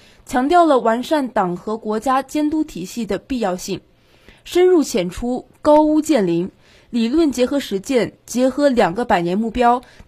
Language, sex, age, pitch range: Chinese, female, 20-39, 205-290 Hz